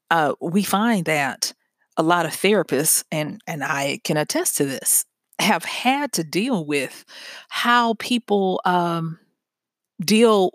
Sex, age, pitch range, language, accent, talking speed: female, 40-59, 155-205 Hz, English, American, 135 wpm